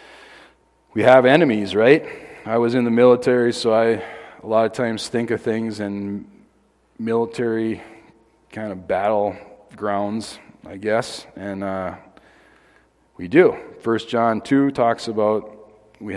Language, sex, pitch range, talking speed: English, male, 100-115 Hz, 135 wpm